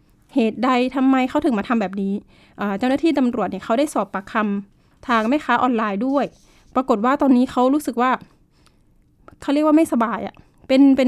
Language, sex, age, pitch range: Thai, female, 20-39, 220-275 Hz